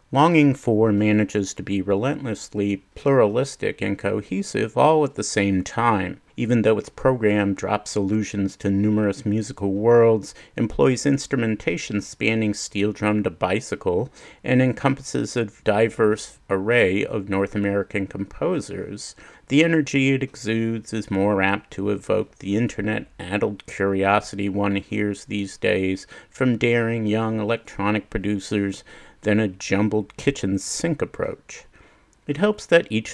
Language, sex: English, male